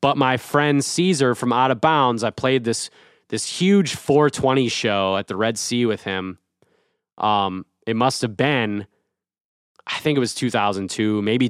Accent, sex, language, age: American, male, English, 20-39